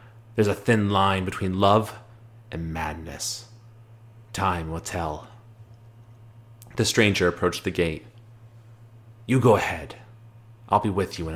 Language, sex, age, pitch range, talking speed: English, male, 30-49, 95-115 Hz, 125 wpm